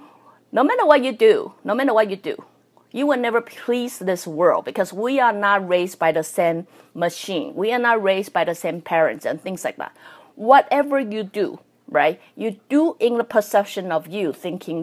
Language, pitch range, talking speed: English, 170-245 Hz, 200 wpm